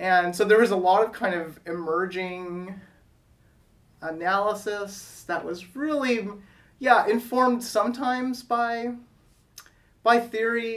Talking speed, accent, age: 110 wpm, American, 30-49